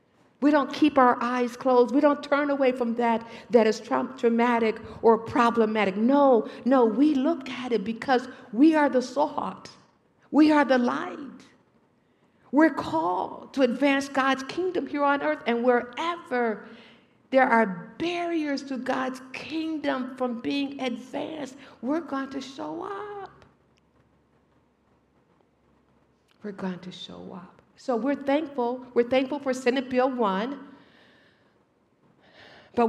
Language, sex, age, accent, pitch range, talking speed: English, female, 50-69, American, 205-265 Hz, 130 wpm